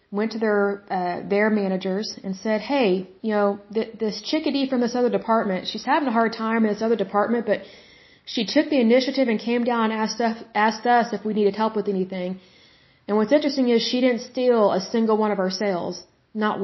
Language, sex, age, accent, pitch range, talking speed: Hindi, female, 30-49, American, 195-230 Hz, 220 wpm